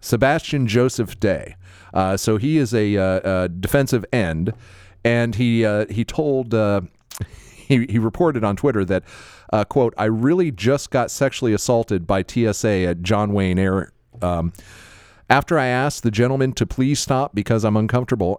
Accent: American